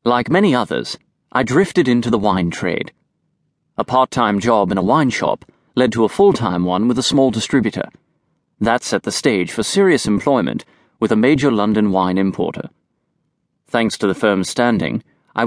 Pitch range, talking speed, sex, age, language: 100-140 Hz, 170 wpm, male, 30-49, English